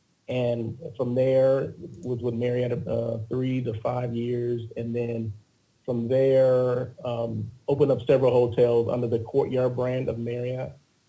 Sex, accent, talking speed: male, American, 140 wpm